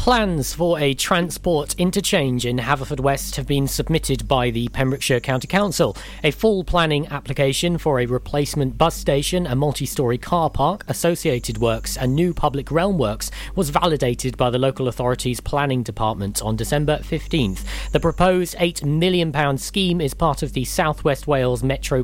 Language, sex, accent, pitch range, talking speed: English, male, British, 135-175 Hz, 165 wpm